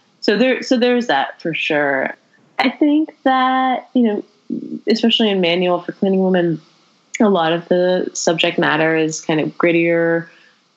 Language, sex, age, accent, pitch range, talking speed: English, female, 20-39, American, 150-200 Hz, 160 wpm